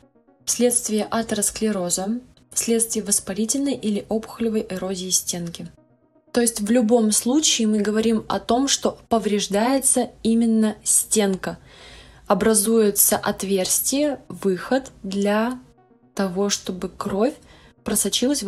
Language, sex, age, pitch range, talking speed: Russian, female, 20-39, 185-225 Hz, 95 wpm